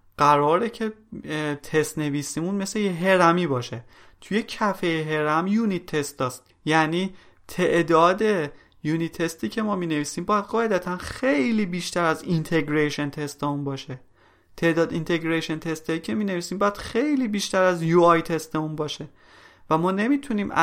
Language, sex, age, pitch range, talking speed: Persian, male, 30-49, 150-185 Hz, 140 wpm